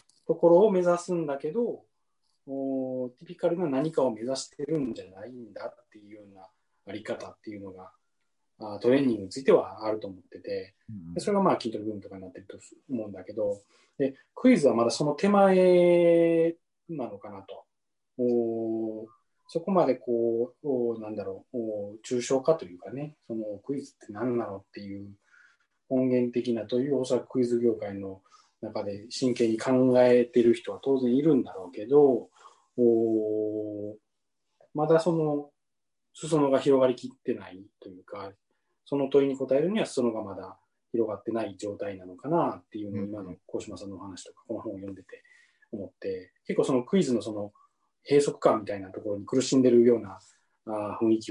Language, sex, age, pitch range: Japanese, male, 20-39, 105-150 Hz